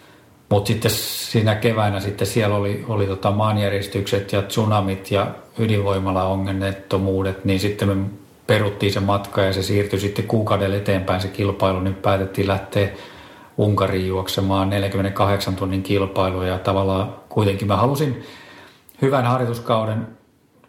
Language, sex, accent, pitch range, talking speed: Finnish, male, native, 95-105 Hz, 130 wpm